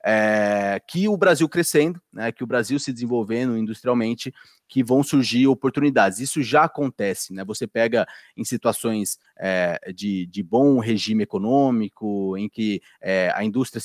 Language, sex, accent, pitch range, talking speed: Portuguese, male, Brazilian, 115-145 Hz, 140 wpm